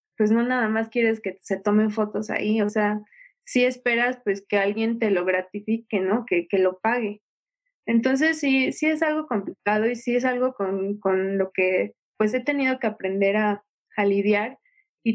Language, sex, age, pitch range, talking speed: Spanish, female, 20-39, 210-260 Hz, 190 wpm